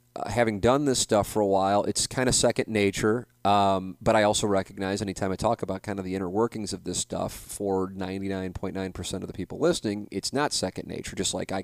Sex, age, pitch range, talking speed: male, 30-49, 95-115 Hz, 220 wpm